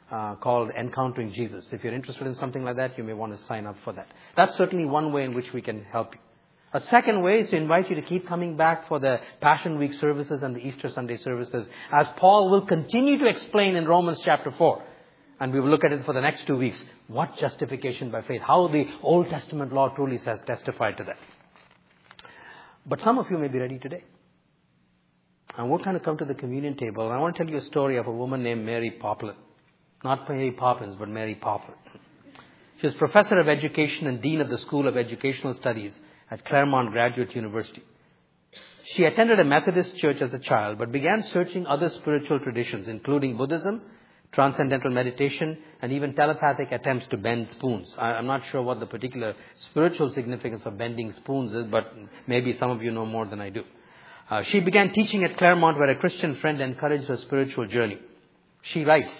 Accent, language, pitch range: Indian, English, 120-155 Hz